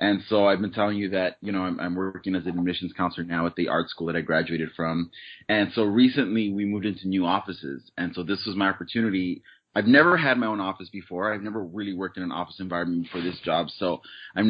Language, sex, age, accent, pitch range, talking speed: English, male, 30-49, American, 95-120 Hz, 245 wpm